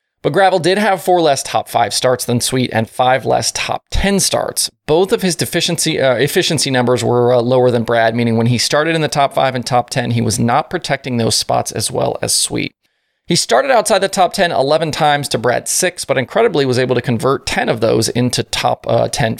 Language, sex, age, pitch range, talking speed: English, male, 20-39, 120-165 Hz, 230 wpm